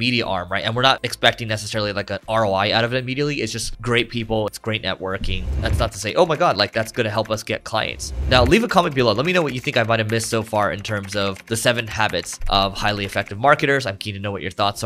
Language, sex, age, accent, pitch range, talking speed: English, male, 20-39, American, 105-130 Hz, 285 wpm